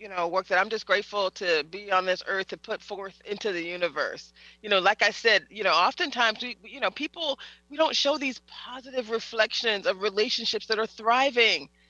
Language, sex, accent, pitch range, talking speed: English, female, American, 195-270 Hz, 210 wpm